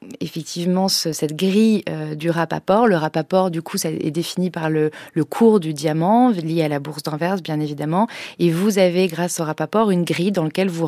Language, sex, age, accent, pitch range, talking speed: French, female, 30-49, French, 165-195 Hz, 210 wpm